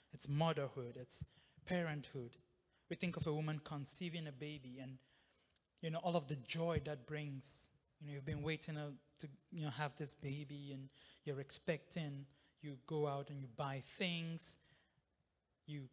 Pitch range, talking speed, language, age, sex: 140-165 Hz, 160 wpm, English, 20-39, male